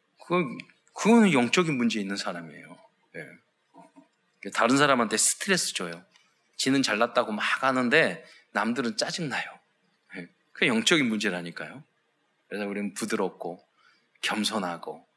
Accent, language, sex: native, Korean, male